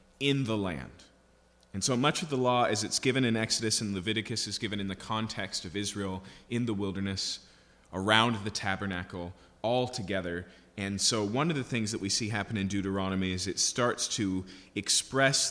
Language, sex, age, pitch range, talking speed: English, male, 30-49, 95-115 Hz, 185 wpm